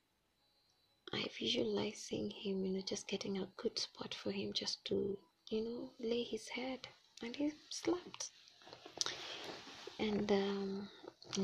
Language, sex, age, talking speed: English, female, 20-39, 120 wpm